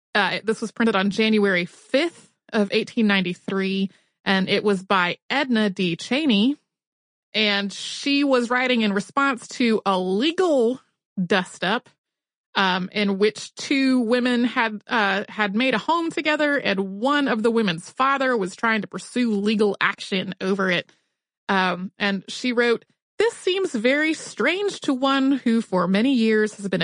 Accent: American